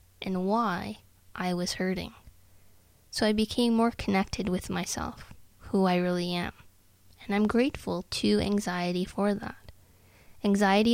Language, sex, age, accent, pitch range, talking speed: English, female, 10-29, American, 180-210 Hz, 130 wpm